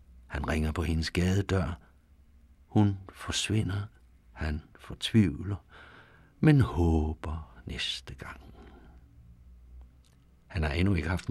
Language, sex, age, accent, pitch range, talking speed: Danish, male, 60-79, native, 75-100 Hz, 95 wpm